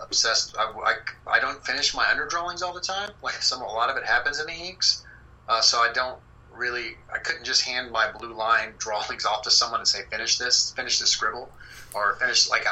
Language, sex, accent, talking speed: English, male, American, 225 wpm